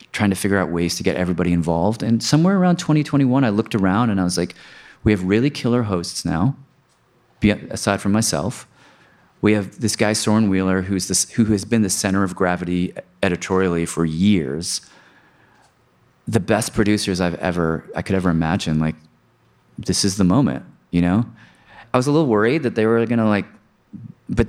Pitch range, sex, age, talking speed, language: 90-115 Hz, male, 30-49, 180 wpm, English